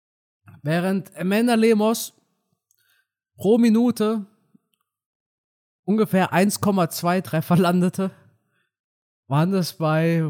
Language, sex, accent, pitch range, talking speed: German, male, German, 145-190 Hz, 70 wpm